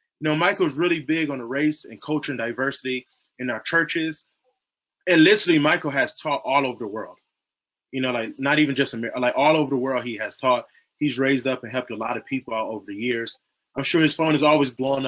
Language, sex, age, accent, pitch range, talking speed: English, male, 20-39, American, 125-155 Hz, 235 wpm